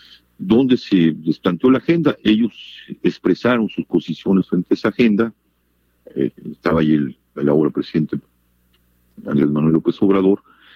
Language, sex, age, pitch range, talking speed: Spanish, male, 50-69, 80-110 Hz, 135 wpm